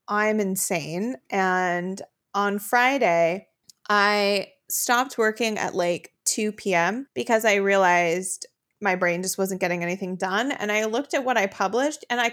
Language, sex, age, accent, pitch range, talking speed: English, female, 20-39, American, 180-240 Hz, 150 wpm